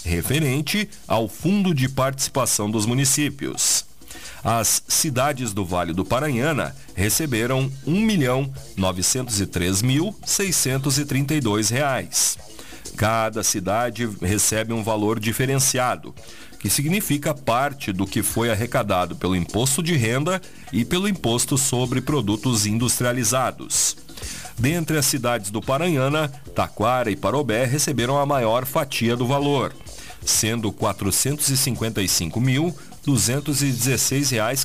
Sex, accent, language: male, Brazilian, Portuguese